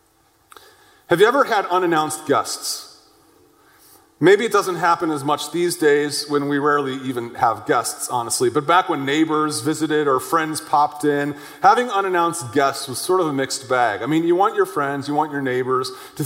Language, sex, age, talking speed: English, male, 30-49, 185 wpm